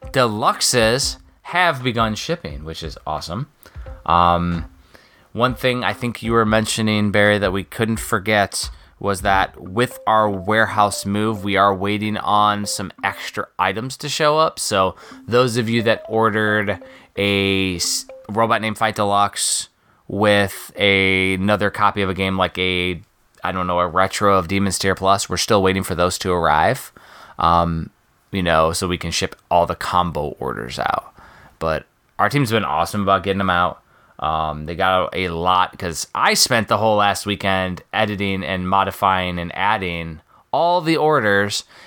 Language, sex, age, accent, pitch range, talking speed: English, male, 20-39, American, 90-110 Hz, 160 wpm